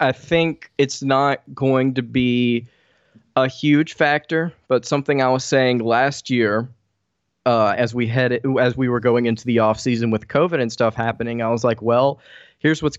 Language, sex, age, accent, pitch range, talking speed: English, male, 20-39, American, 115-135 Hz, 180 wpm